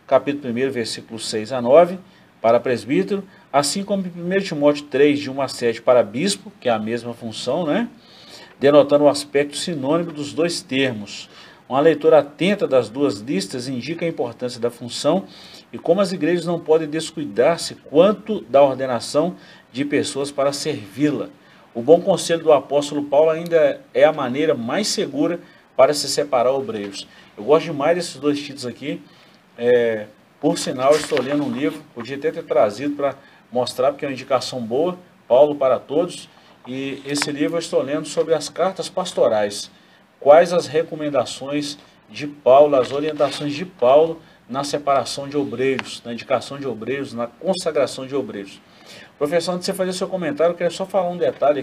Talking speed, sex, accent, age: 170 wpm, male, Brazilian, 40-59